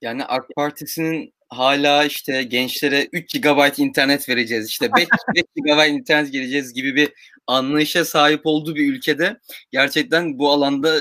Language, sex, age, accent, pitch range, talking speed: Turkish, male, 30-49, native, 140-190 Hz, 140 wpm